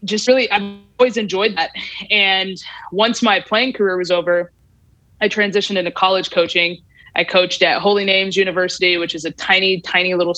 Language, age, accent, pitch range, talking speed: English, 20-39, American, 170-200 Hz, 175 wpm